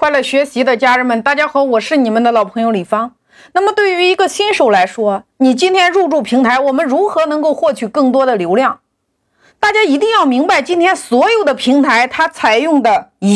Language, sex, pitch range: Chinese, female, 255-375 Hz